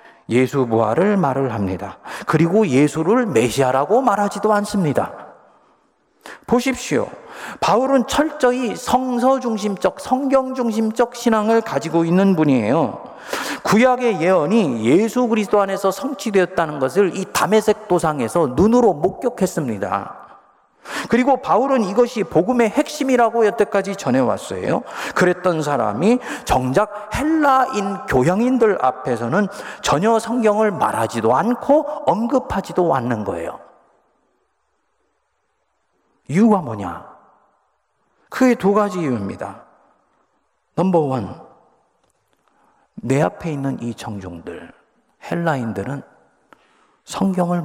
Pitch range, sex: 155-240 Hz, male